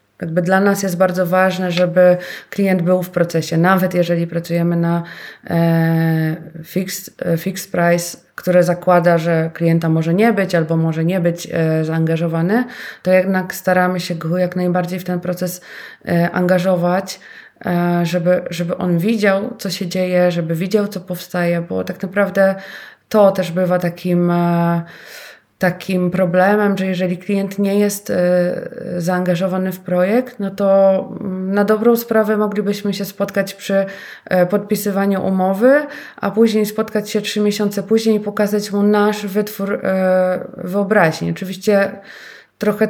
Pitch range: 175-200 Hz